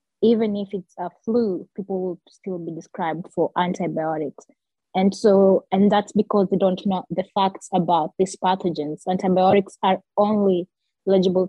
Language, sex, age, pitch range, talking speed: English, female, 20-39, 175-200 Hz, 150 wpm